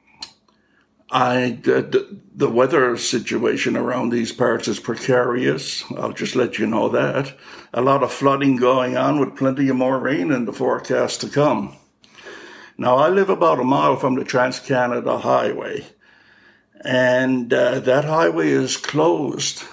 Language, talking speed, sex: English, 145 wpm, male